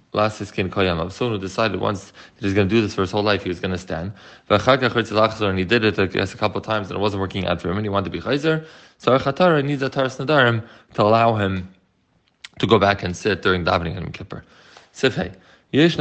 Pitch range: 95-115 Hz